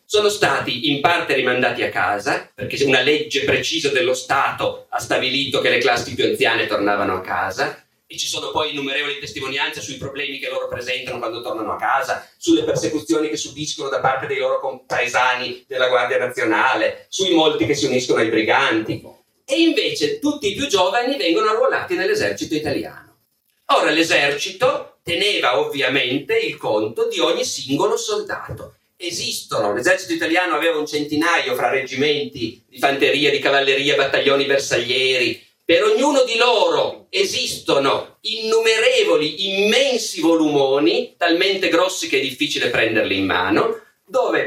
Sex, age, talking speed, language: male, 40-59, 145 wpm, Italian